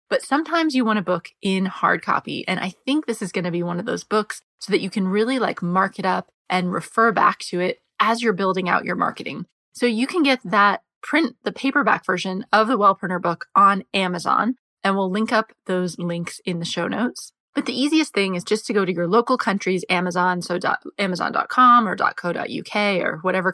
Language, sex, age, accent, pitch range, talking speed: English, female, 20-39, American, 180-220 Hz, 215 wpm